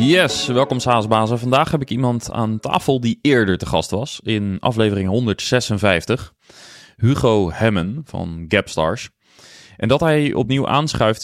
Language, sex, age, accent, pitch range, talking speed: Dutch, male, 20-39, Dutch, 105-135 Hz, 140 wpm